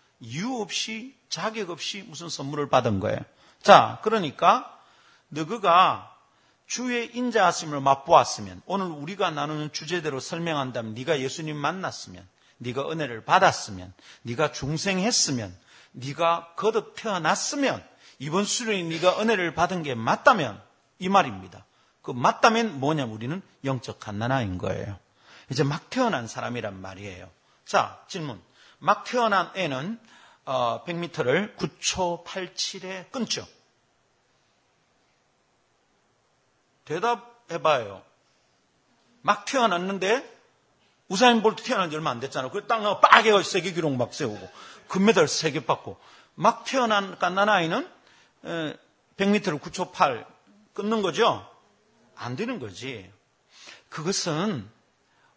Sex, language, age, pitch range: male, Korean, 40-59, 135-205 Hz